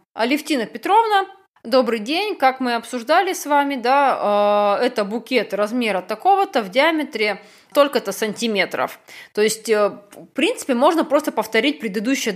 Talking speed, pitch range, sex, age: 130 wpm, 200-270 Hz, female, 20-39